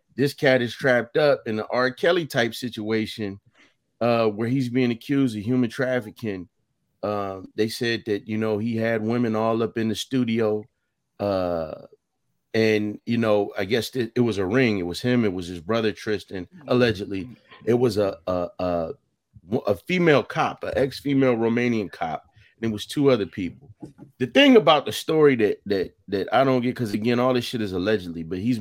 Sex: male